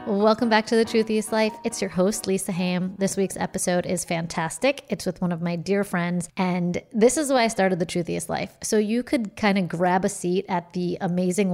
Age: 30-49